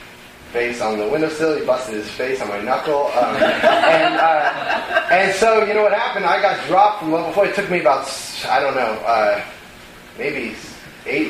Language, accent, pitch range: English, American, 145-190 Hz